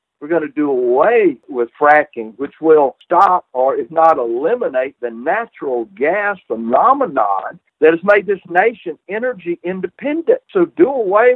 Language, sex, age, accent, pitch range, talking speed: English, male, 60-79, American, 145-185 Hz, 150 wpm